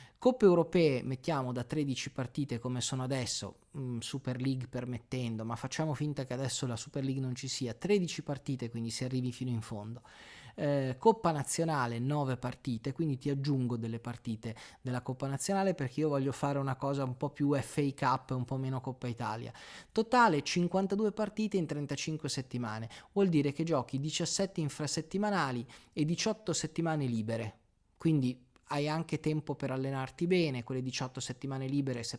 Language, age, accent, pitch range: Italian, 20-39, native, 125-160 Hz